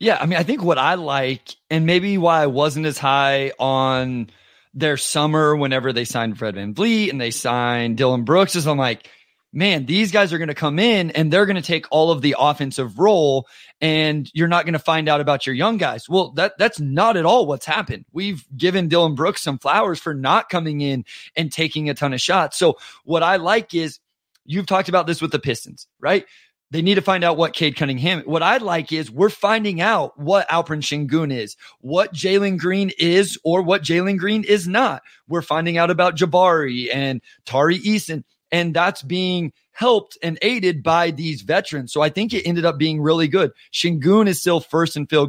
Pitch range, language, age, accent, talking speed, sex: 145-180 Hz, English, 30-49, American, 210 wpm, male